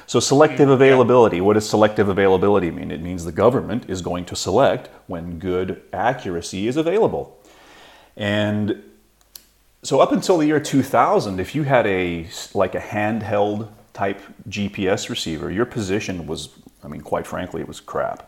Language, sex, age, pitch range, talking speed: English, male, 30-49, 90-105 Hz, 160 wpm